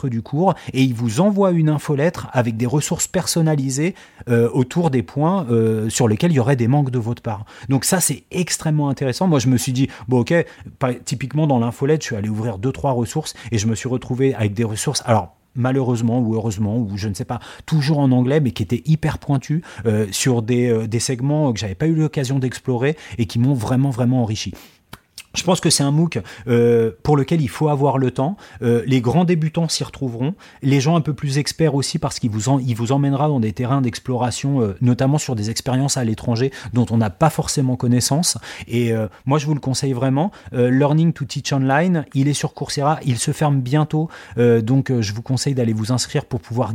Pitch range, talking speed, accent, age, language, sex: 120-145 Hz, 225 wpm, French, 30-49, French, male